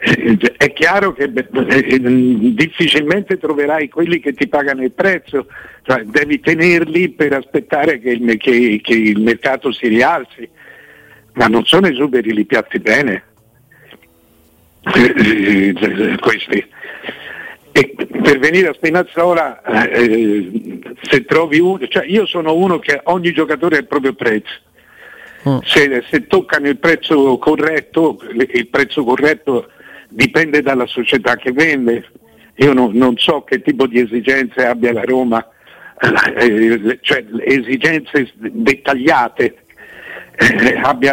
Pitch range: 120-155 Hz